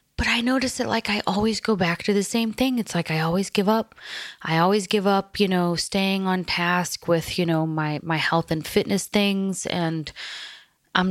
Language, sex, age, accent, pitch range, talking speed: English, female, 20-39, American, 160-200 Hz, 210 wpm